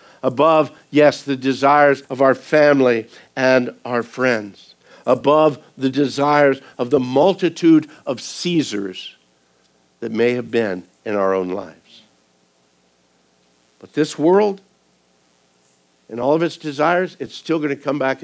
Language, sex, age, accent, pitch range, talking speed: English, male, 60-79, American, 110-155 Hz, 130 wpm